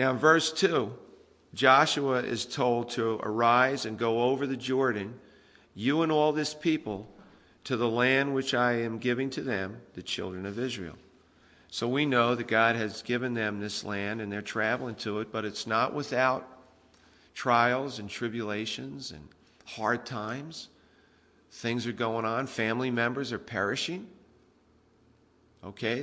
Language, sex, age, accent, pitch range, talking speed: English, male, 50-69, American, 105-125 Hz, 150 wpm